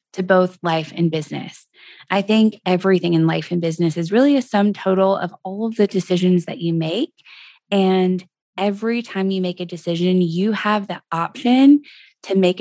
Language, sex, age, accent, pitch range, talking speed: English, female, 20-39, American, 180-230 Hz, 180 wpm